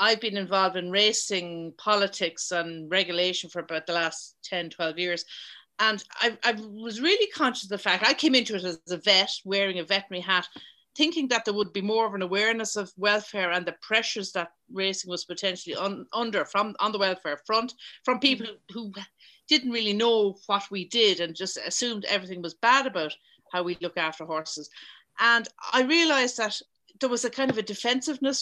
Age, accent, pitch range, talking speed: 40-59, Irish, 180-235 Hz, 190 wpm